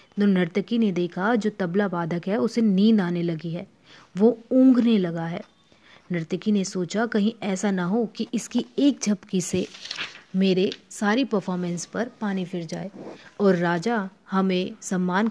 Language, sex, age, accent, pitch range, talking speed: Hindi, female, 30-49, native, 185-225 Hz, 155 wpm